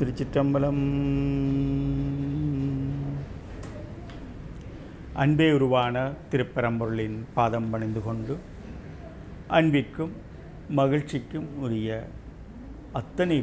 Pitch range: 110-150 Hz